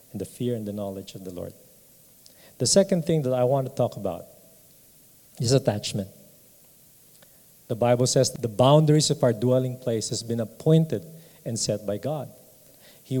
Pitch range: 120-150 Hz